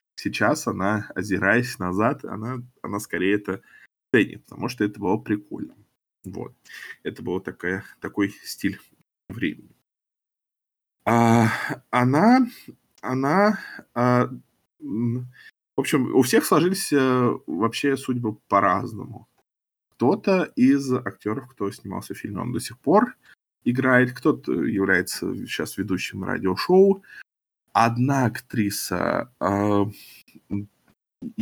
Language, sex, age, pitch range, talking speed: Russian, male, 20-39, 100-125 Hz, 100 wpm